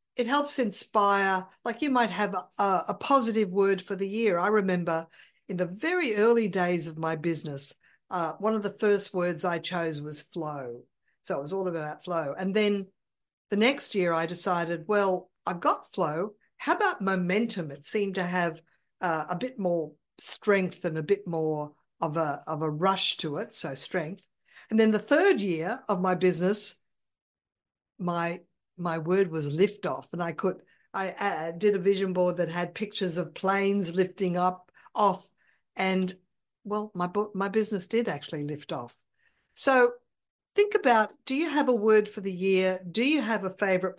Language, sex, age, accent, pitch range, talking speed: English, female, 50-69, Australian, 175-215 Hz, 180 wpm